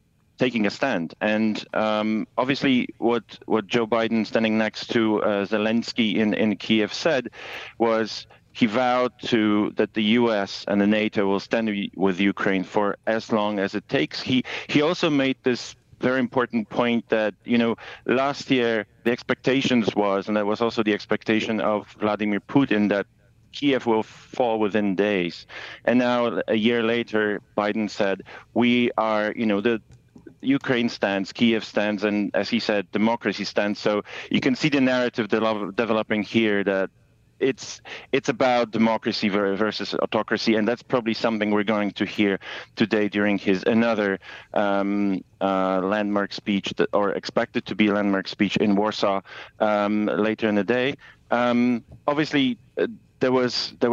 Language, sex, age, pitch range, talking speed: English, male, 40-59, 105-120 Hz, 160 wpm